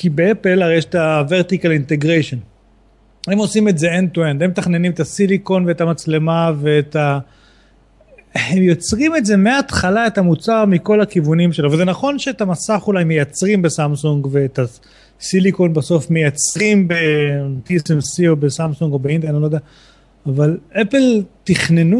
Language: Hebrew